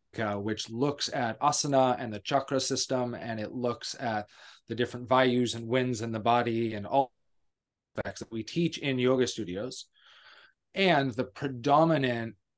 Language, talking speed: English, 155 wpm